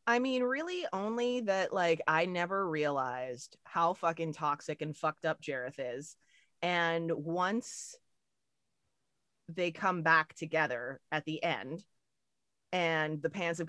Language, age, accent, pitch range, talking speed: English, 30-49, American, 155-190 Hz, 130 wpm